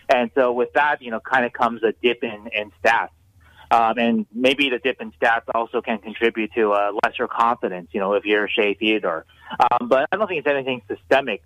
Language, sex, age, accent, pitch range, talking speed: English, male, 30-49, American, 115-140 Hz, 225 wpm